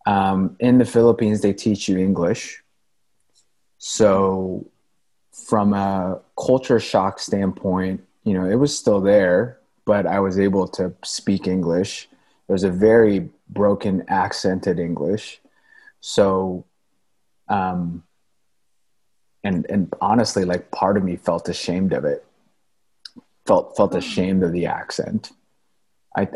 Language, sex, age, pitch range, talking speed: English, male, 30-49, 95-105 Hz, 125 wpm